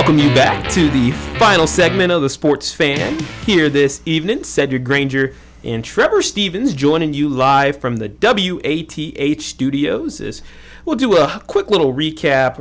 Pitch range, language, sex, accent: 125-155 Hz, English, male, American